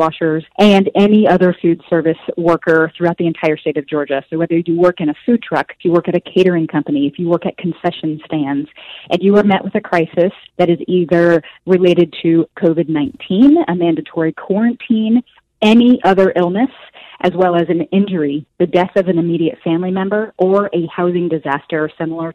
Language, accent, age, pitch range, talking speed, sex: English, American, 30-49, 160-185 Hz, 190 wpm, female